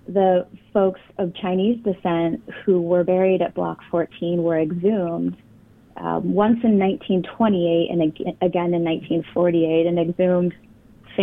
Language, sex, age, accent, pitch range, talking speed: English, female, 30-49, American, 165-200 Hz, 110 wpm